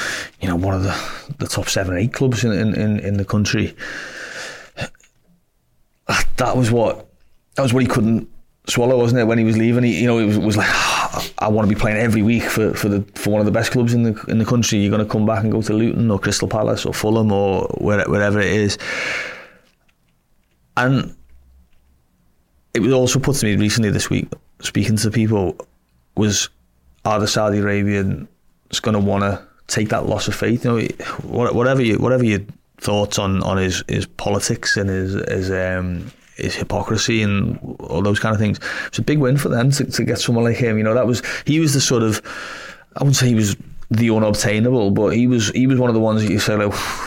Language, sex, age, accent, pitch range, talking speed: English, male, 30-49, British, 100-120 Hz, 220 wpm